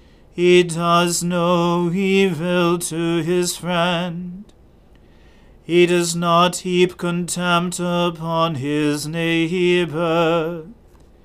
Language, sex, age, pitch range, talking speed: English, male, 40-59, 165-175 Hz, 80 wpm